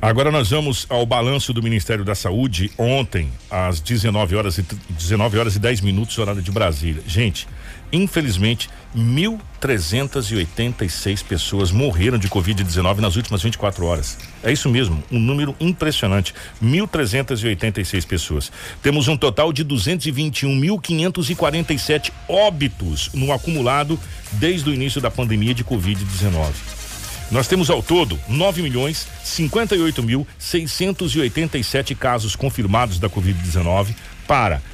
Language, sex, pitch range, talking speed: Portuguese, male, 100-140 Hz, 115 wpm